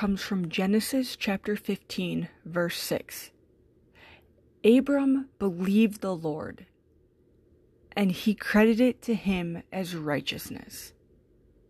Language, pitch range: English, 170-220 Hz